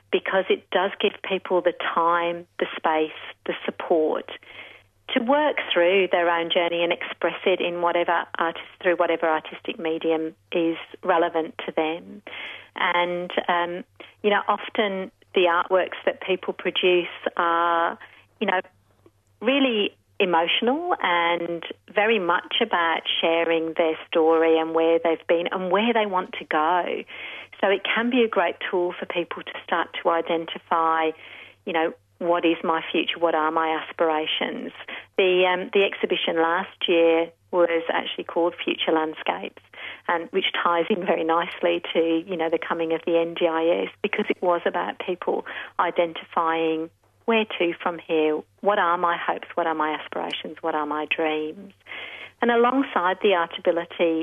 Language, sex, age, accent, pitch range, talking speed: English, female, 40-59, British, 165-190 Hz, 150 wpm